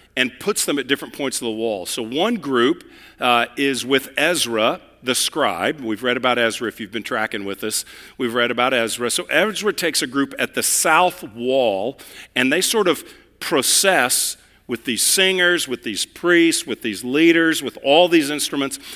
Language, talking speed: English, 185 wpm